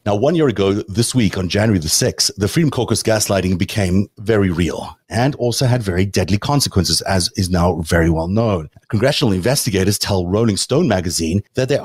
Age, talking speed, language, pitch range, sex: 30-49, 185 wpm, English, 95-125 Hz, male